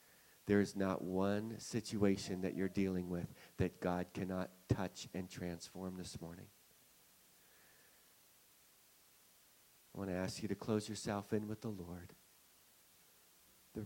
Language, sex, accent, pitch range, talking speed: English, male, American, 95-110 Hz, 130 wpm